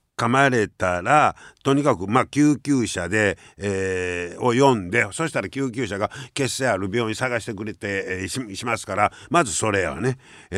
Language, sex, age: Japanese, male, 50-69